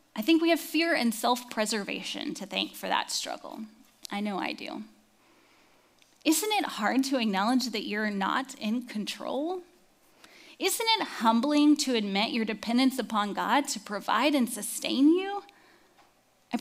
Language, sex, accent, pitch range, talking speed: English, female, American, 220-295 Hz, 150 wpm